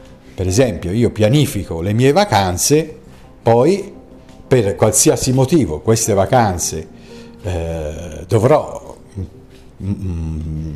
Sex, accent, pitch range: male, native, 90-130 Hz